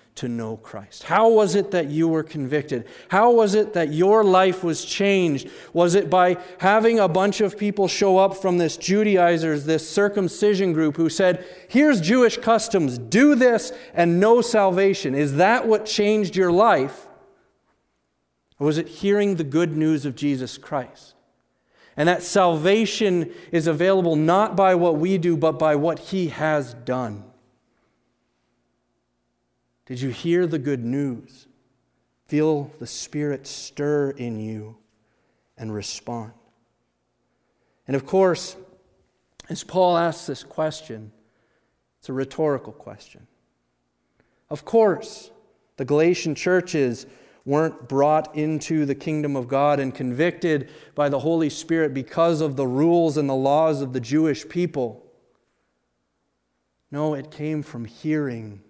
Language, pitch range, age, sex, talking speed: English, 125-185 Hz, 40-59, male, 140 wpm